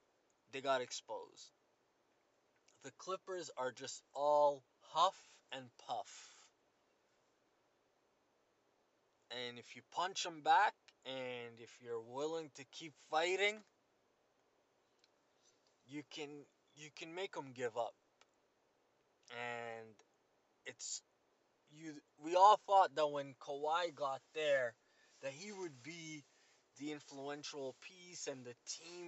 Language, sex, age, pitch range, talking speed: English, male, 20-39, 130-180 Hz, 110 wpm